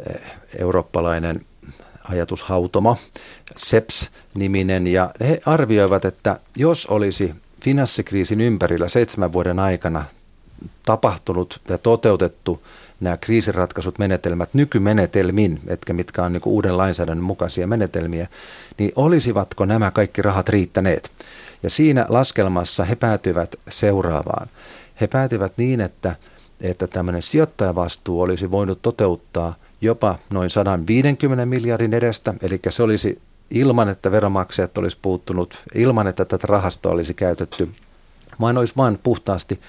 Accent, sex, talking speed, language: native, male, 110 wpm, Finnish